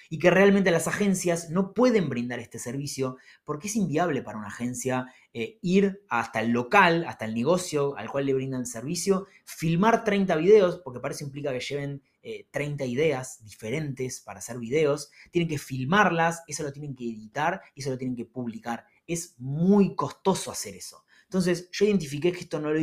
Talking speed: 185 wpm